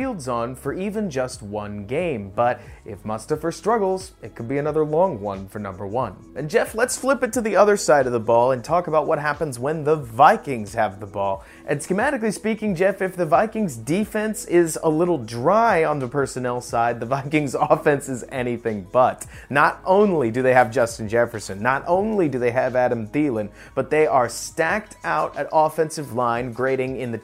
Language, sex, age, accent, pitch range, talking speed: English, male, 30-49, American, 115-160 Hz, 195 wpm